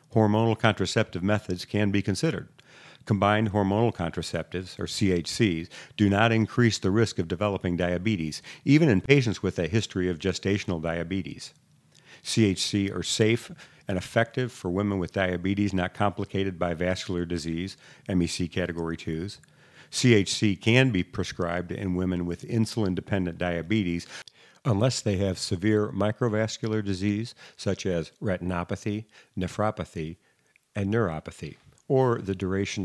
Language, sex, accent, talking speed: English, male, American, 125 wpm